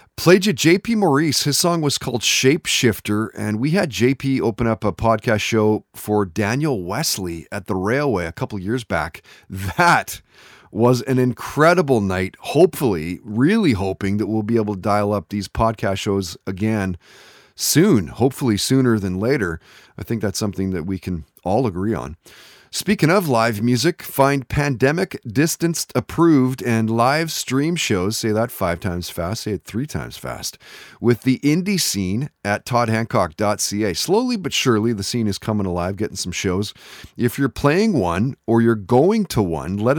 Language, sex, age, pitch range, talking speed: English, male, 30-49, 105-135 Hz, 165 wpm